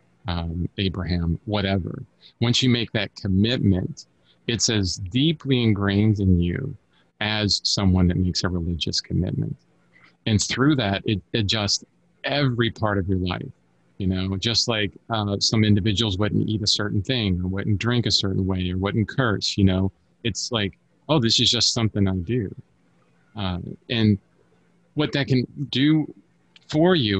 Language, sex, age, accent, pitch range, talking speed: English, male, 30-49, American, 95-120 Hz, 155 wpm